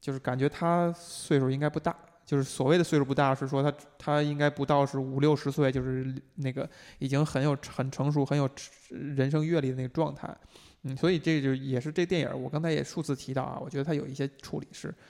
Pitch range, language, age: 135-155 Hz, Chinese, 20-39